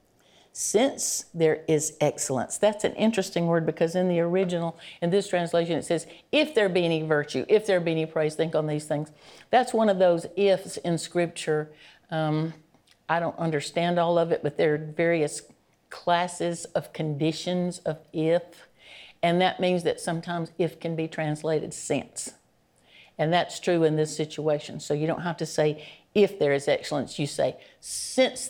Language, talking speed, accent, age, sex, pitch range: English, 175 wpm, American, 60-79, female, 155-190 Hz